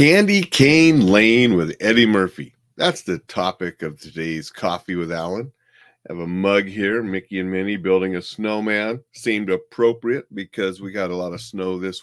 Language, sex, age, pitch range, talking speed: English, male, 40-59, 90-115 Hz, 175 wpm